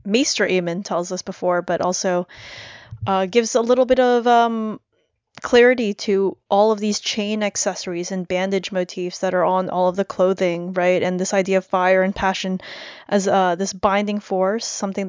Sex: female